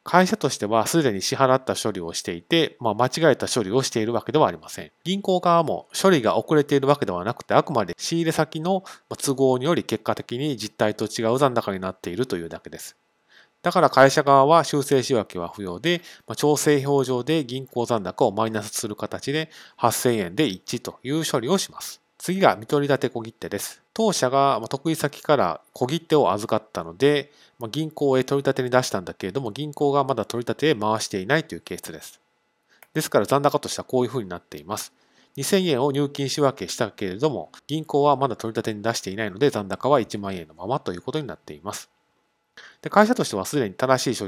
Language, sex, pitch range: Japanese, male, 110-150 Hz